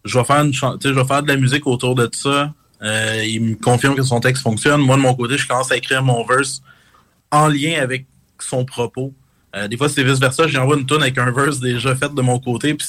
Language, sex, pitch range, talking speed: French, male, 120-140 Hz, 255 wpm